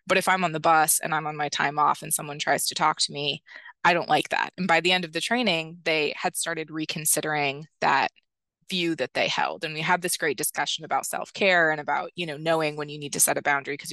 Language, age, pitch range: English, 20-39, 150-180 Hz